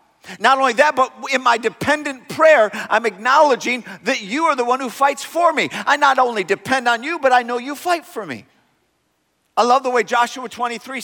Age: 50-69